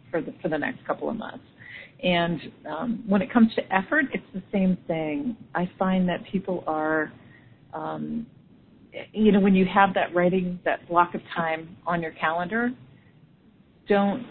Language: English